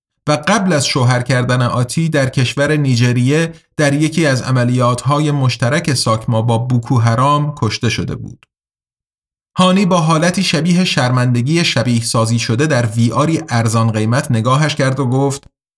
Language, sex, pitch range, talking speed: Persian, male, 120-170 Hz, 145 wpm